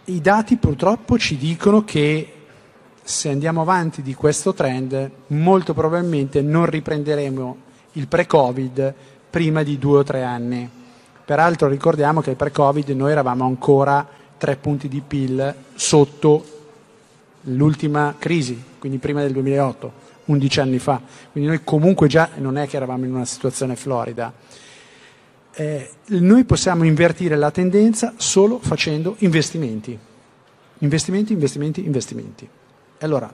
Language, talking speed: Italian, 130 wpm